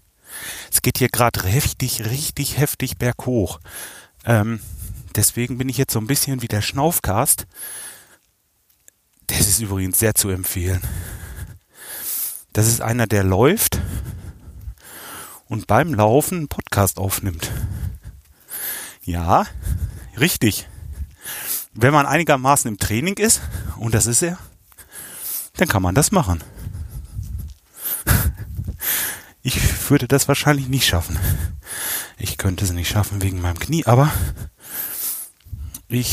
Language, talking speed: German, 115 wpm